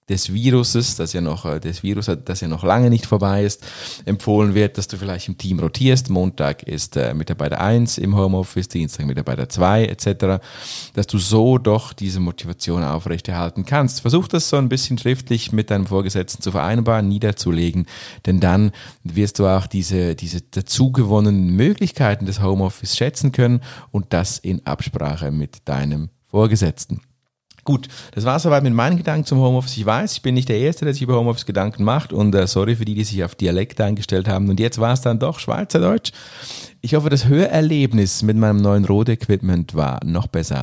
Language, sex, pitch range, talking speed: German, male, 95-120 Hz, 185 wpm